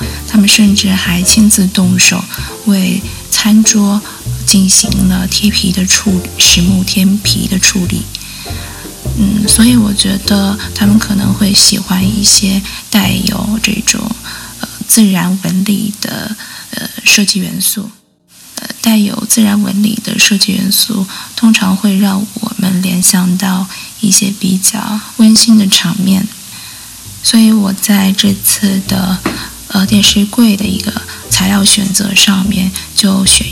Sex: female